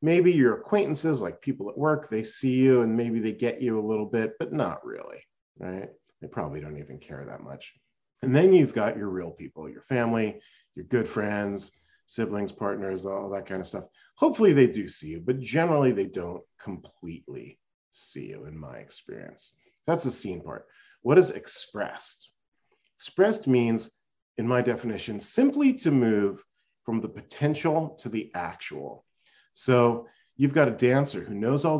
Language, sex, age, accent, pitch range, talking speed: English, male, 40-59, American, 100-140 Hz, 175 wpm